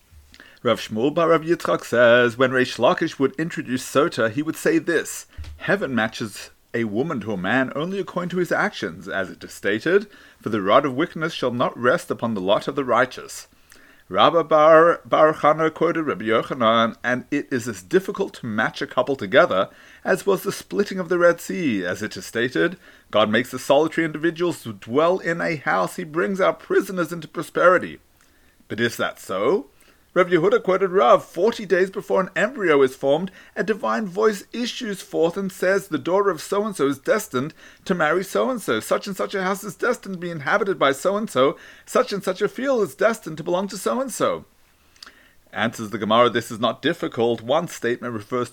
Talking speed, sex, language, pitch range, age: 185 wpm, male, English, 130-195 Hz, 30-49